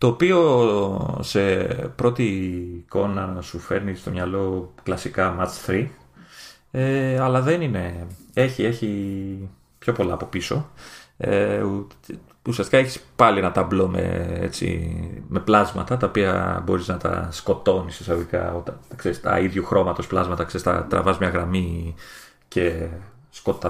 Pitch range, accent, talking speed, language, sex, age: 90-105 Hz, Spanish, 130 wpm, Greek, male, 30-49